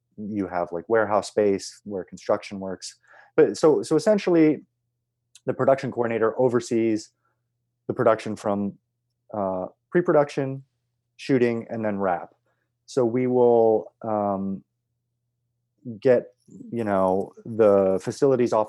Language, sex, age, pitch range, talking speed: English, male, 30-49, 100-120 Hz, 110 wpm